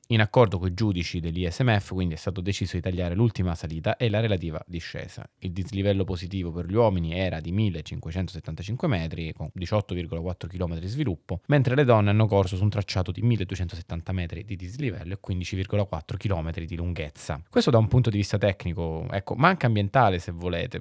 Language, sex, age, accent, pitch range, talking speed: Italian, male, 20-39, native, 85-105 Hz, 185 wpm